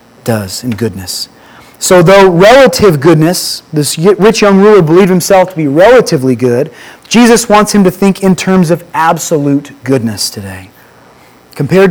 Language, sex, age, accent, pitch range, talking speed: English, male, 30-49, American, 135-200 Hz, 145 wpm